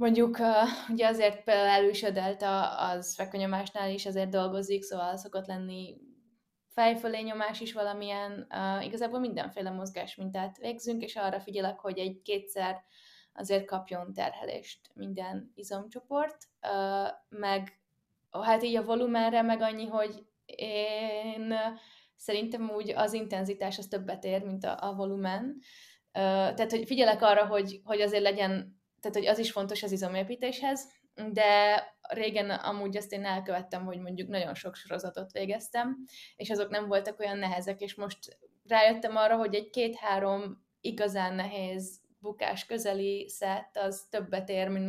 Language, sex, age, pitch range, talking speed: Hungarian, female, 20-39, 195-225 Hz, 130 wpm